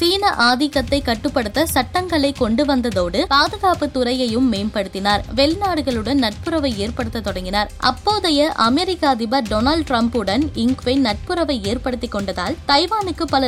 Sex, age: female, 20-39